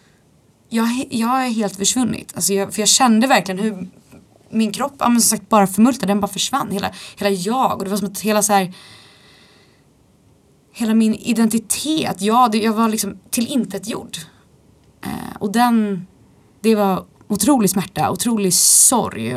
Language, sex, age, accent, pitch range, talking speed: Swedish, female, 20-39, native, 180-220 Hz, 165 wpm